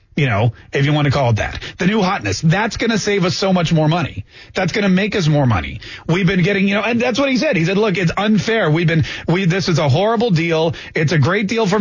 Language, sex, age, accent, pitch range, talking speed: English, male, 30-49, American, 160-230 Hz, 285 wpm